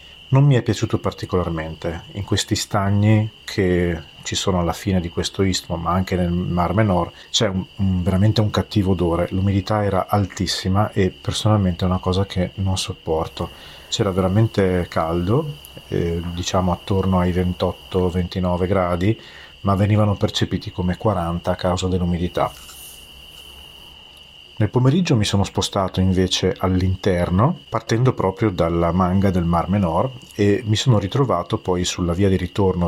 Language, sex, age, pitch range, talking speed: Italian, male, 40-59, 85-105 Hz, 140 wpm